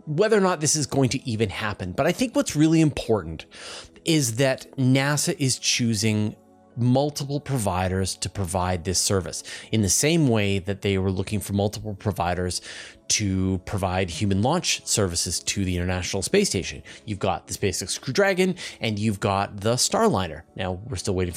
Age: 30-49